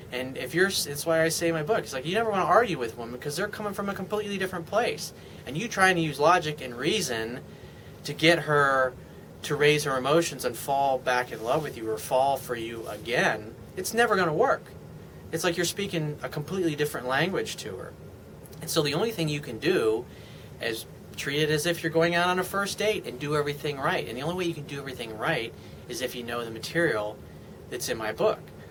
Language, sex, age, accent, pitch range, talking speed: English, male, 30-49, American, 125-170 Hz, 235 wpm